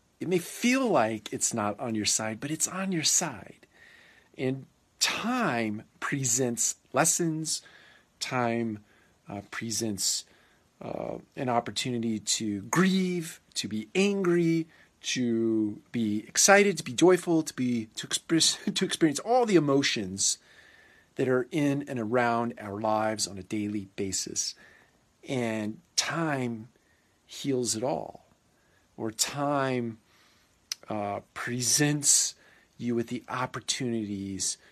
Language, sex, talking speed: English, male, 115 wpm